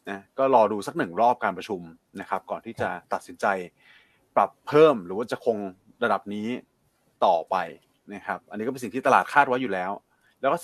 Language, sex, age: Thai, male, 20-39